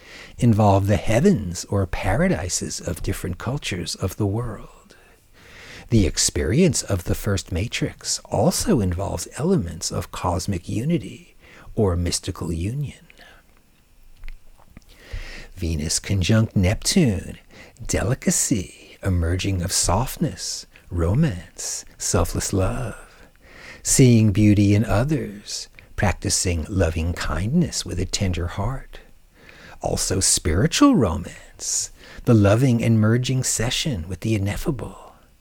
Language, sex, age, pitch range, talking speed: English, male, 60-79, 90-115 Hz, 100 wpm